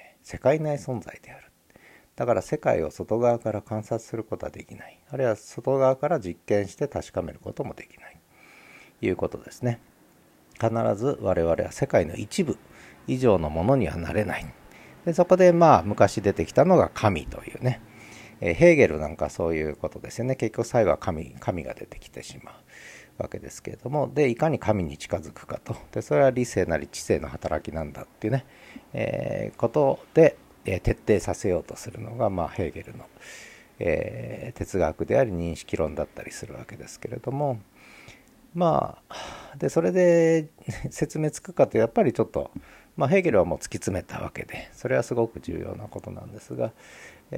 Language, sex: Japanese, male